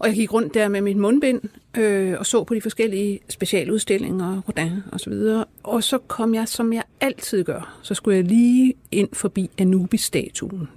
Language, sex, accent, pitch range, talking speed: Danish, female, native, 160-220 Hz, 190 wpm